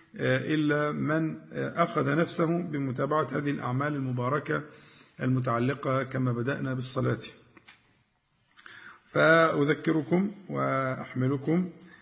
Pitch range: 130-160 Hz